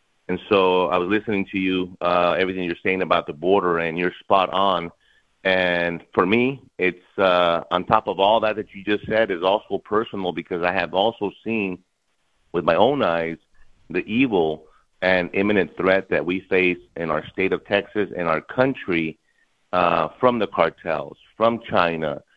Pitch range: 85-105 Hz